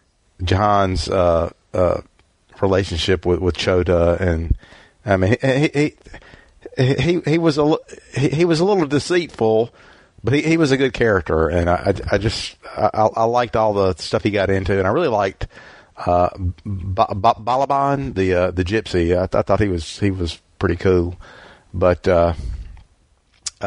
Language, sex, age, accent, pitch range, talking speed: English, male, 50-69, American, 90-120 Hz, 170 wpm